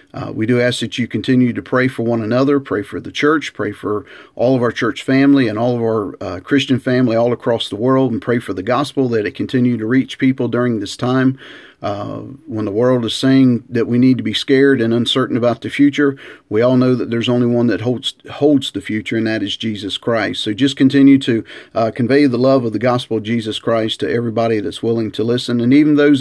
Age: 40-59